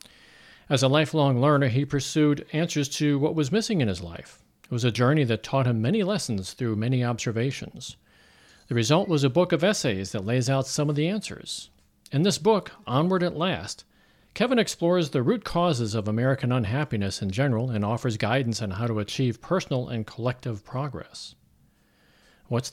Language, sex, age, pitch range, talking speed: English, male, 50-69, 120-160 Hz, 180 wpm